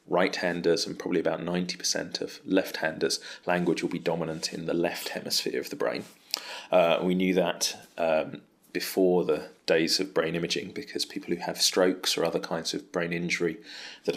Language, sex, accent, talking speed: English, male, British, 175 wpm